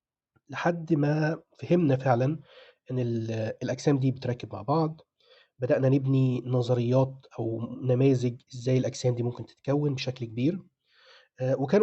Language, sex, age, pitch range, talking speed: Arabic, male, 30-49, 125-155 Hz, 115 wpm